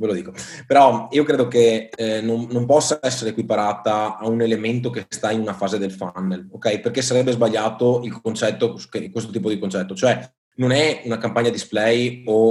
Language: Italian